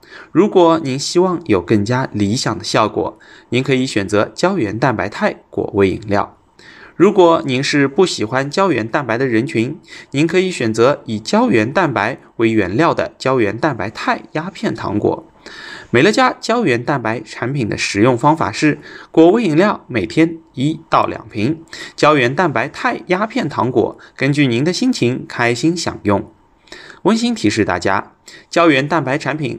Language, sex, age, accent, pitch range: Chinese, male, 20-39, native, 115-170 Hz